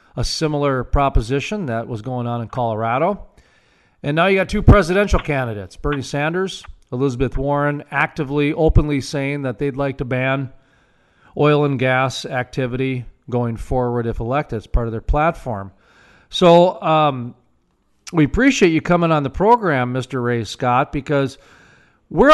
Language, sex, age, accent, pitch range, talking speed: English, male, 40-59, American, 130-175 Hz, 150 wpm